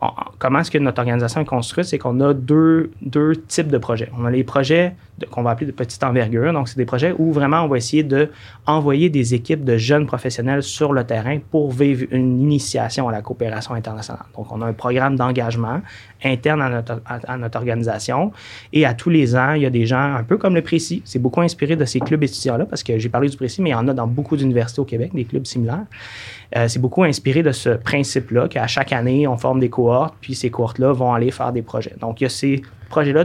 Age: 30-49